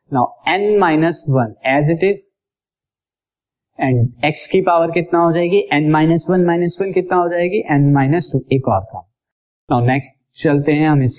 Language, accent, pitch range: Hindi, native, 125-160 Hz